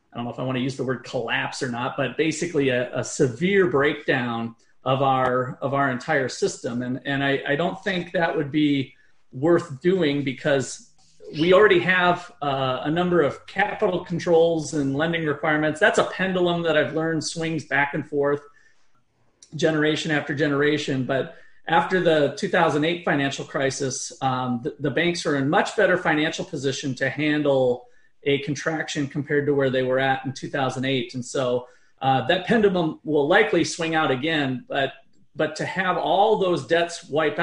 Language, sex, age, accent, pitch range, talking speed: English, male, 40-59, American, 135-165 Hz, 175 wpm